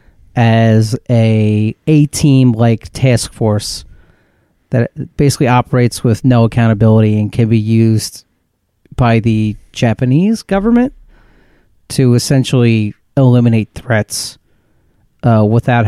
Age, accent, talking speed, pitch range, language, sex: 30-49, American, 100 wpm, 110-130 Hz, English, male